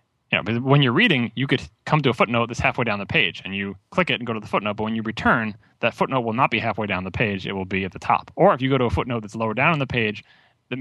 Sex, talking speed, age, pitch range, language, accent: male, 335 wpm, 30-49, 100-125 Hz, English, American